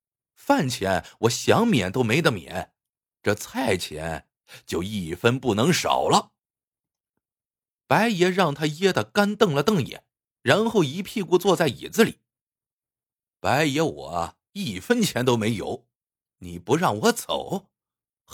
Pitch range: 120-195 Hz